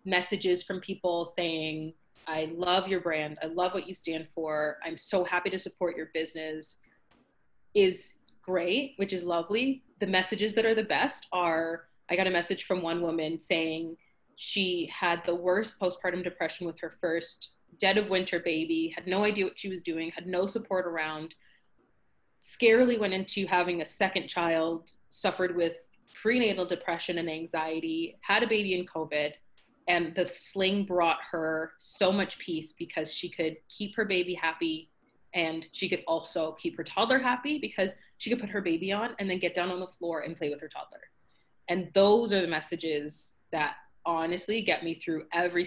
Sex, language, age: female, English, 20-39